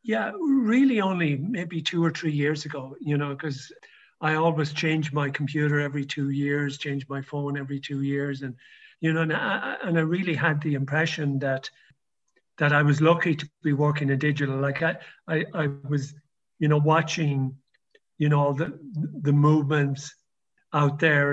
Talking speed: 175 wpm